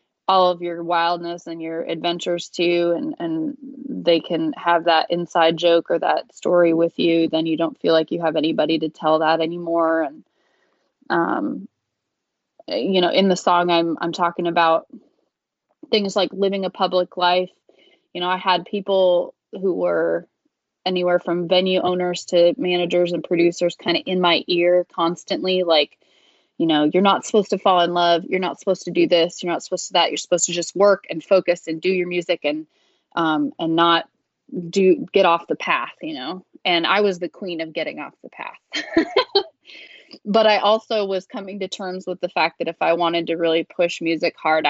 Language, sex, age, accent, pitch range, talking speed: English, female, 20-39, American, 165-190 Hz, 195 wpm